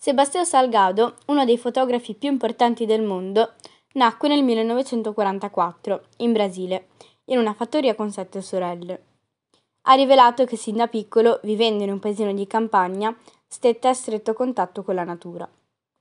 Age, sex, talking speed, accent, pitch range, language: 20-39, female, 145 wpm, native, 205-255 Hz, Italian